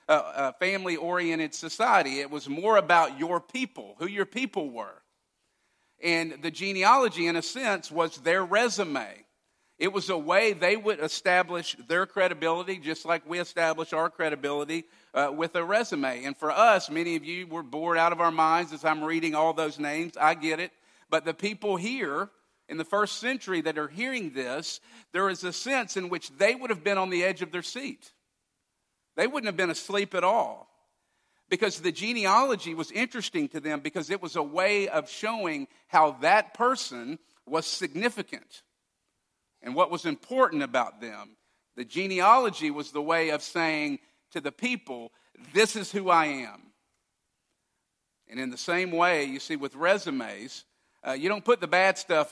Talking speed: 175 wpm